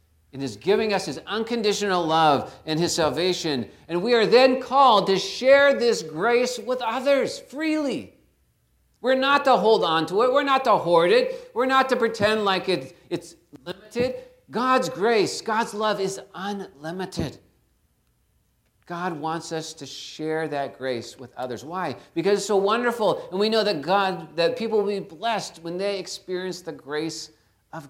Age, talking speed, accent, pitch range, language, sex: 40-59, 170 wpm, American, 125-200 Hz, English, male